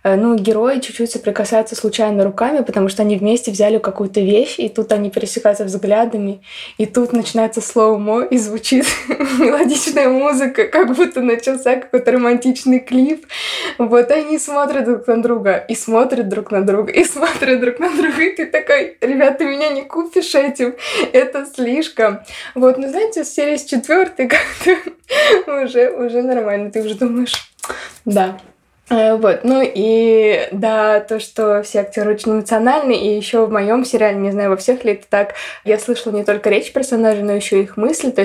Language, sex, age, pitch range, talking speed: Russian, female, 20-39, 205-255 Hz, 170 wpm